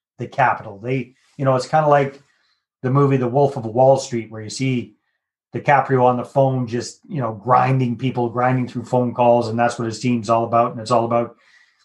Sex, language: male, English